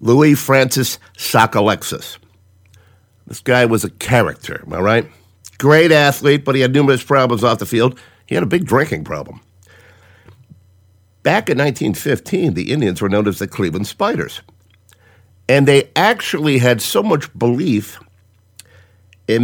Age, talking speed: 50-69, 140 wpm